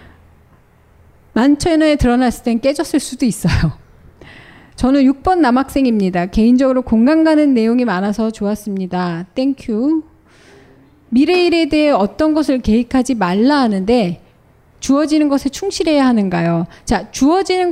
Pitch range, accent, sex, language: 210-295 Hz, native, female, Korean